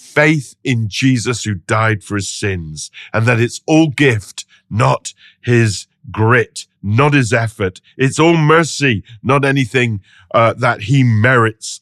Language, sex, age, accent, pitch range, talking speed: English, male, 50-69, British, 105-160 Hz, 140 wpm